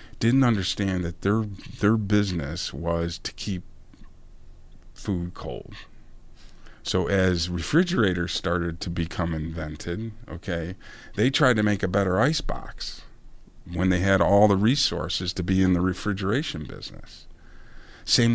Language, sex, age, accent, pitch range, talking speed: English, male, 50-69, American, 85-105 Hz, 130 wpm